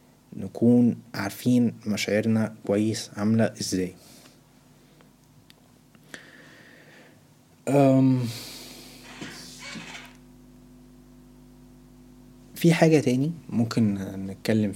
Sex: male